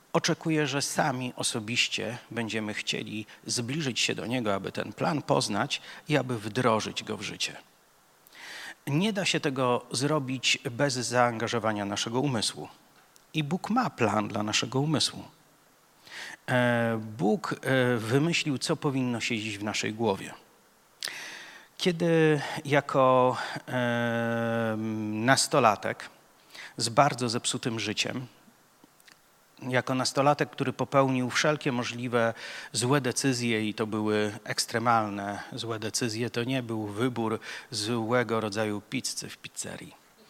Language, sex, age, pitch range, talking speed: Polish, male, 40-59, 115-145 Hz, 110 wpm